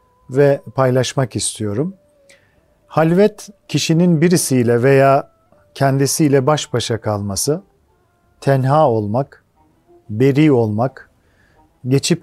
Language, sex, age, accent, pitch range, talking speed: Turkish, male, 40-59, native, 130-165 Hz, 80 wpm